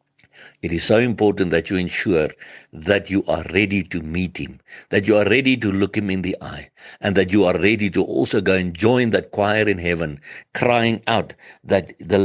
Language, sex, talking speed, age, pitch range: English, male, 205 wpm, 60-79, 90-110 Hz